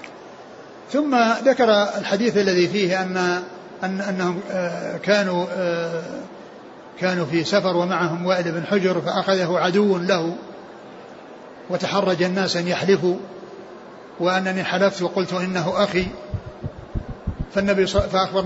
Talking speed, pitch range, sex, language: 100 wpm, 175-200 Hz, male, Arabic